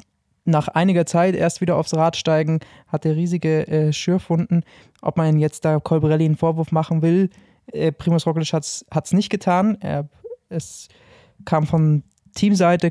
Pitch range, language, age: 150-175 Hz, German, 20-39